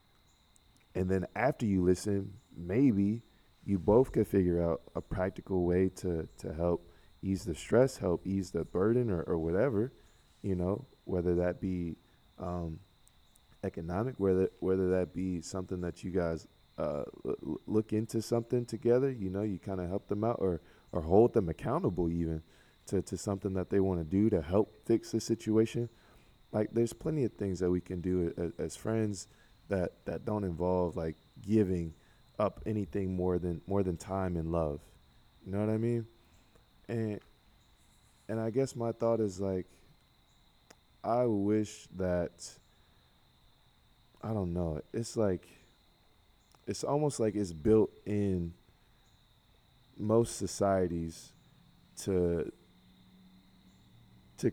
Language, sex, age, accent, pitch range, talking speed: English, male, 20-39, American, 90-110 Hz, 145 wpm